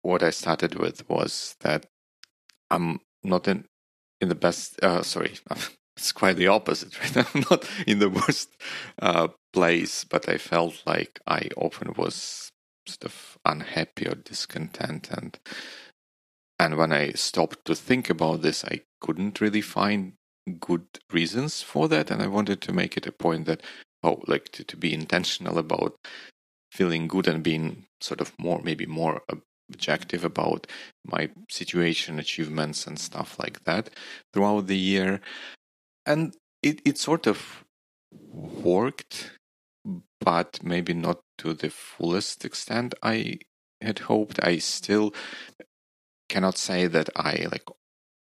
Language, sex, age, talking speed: Russian, male, 30-49, 145 wpm